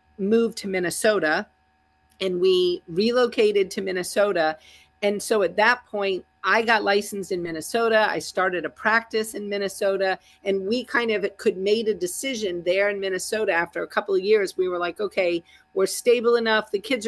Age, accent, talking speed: 40-59, American, 175 wpm